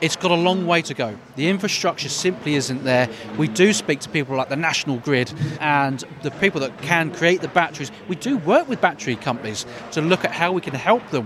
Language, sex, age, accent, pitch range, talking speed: English, male, 30-49, British, 130-170 Hz, 230 wpm